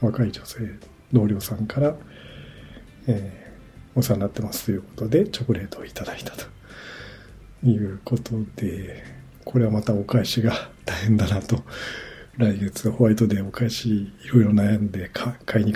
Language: Japanese